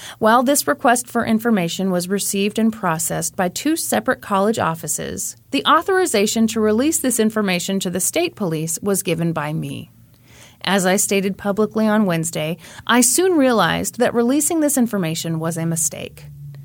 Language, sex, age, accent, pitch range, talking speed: English, female, 30-49, American, 175-235 Hz, 160 wpm